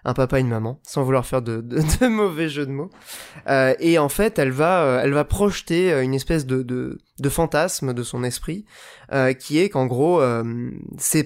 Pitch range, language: 135-175 Hz, French